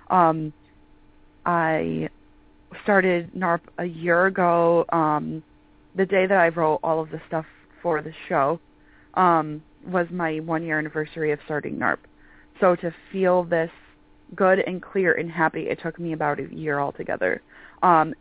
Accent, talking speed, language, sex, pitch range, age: American, 150 wpm, English, female, 155-180 Hz, 30-49